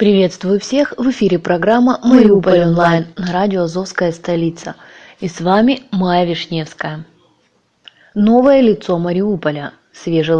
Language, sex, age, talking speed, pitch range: Russian, female, 20-39, 110 wpm, 175-240 Hz